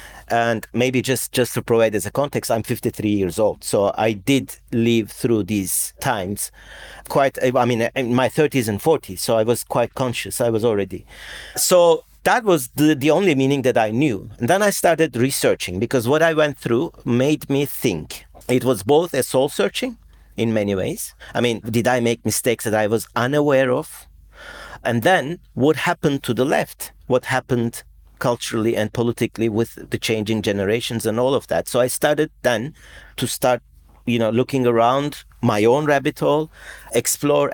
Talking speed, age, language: 180 wpm, 50-69, English